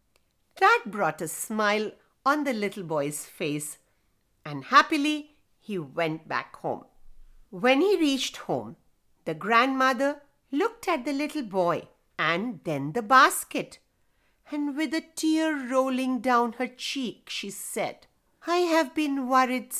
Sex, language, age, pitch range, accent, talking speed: female, English, 50-69, 215-315 Hz, Indian, 135 wpm